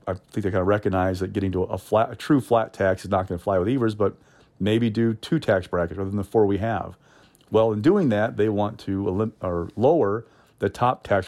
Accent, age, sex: American, 40-59, male